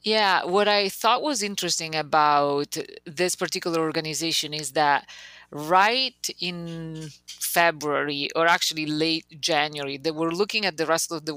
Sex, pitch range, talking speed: female, 150-175 Hz, 145 wpm